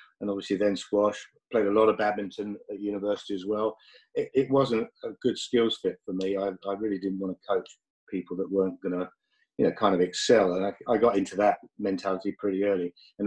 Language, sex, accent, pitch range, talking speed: English, male, British, 100-120 Hz, 220 wpm